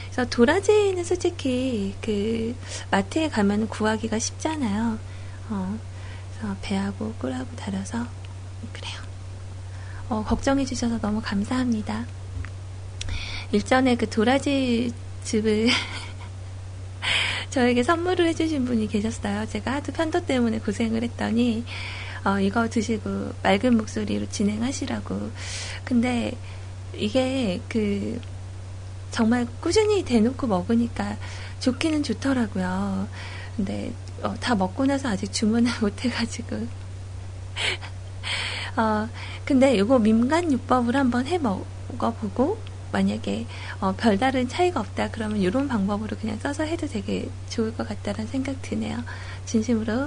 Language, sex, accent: Korean, female, native